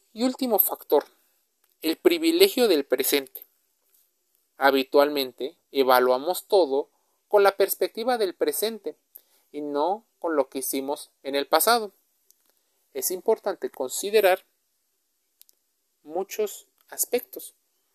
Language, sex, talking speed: Spanish, male, 95 wpm